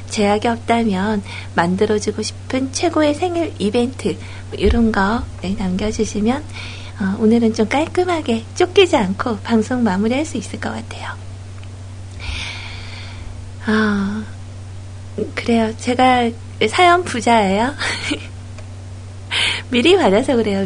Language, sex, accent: Korean, female, native